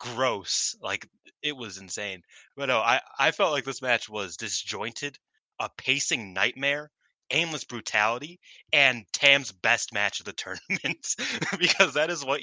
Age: 20-39